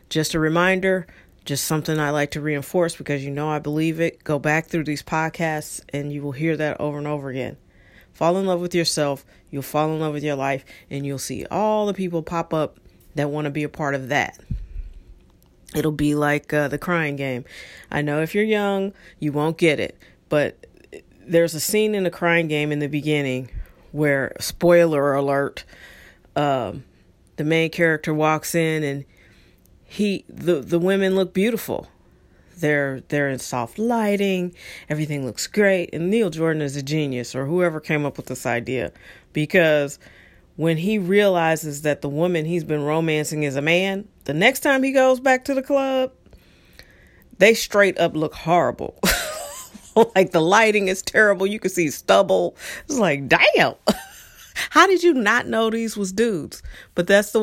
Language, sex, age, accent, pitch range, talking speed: English, female, 40-59, American, 145-190 Hz, 180 wpm